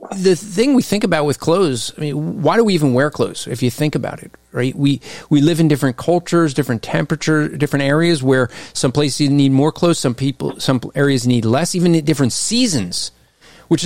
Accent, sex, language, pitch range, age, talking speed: American, male, English, 145-185 Hz, 40-59, 210 wpm